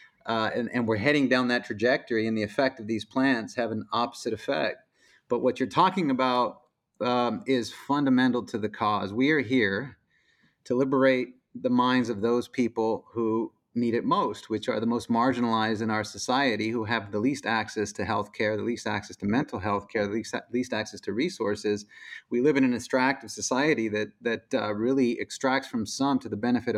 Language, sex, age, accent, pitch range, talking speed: English, male, 30-49, American, 110-135 Hz, 195 wpm